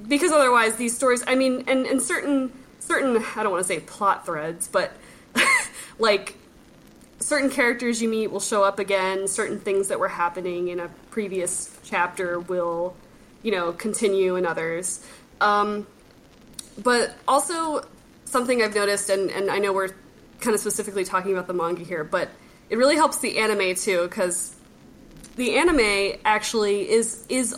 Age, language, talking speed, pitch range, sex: 20-39, English, 160 wpm, 180-225 Hz, female